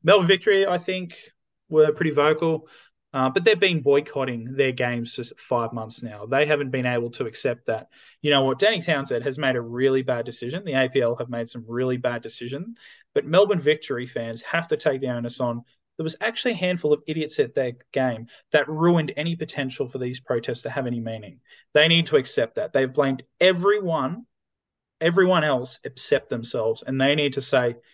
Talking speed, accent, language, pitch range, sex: 200 wpm, Australian, English, 120-155 Hz, male